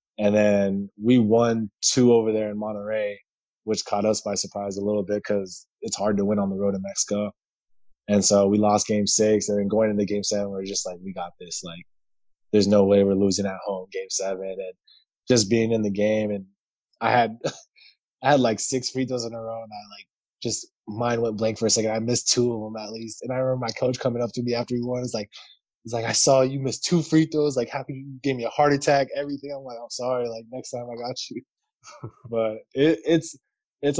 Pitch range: 105-120 Hz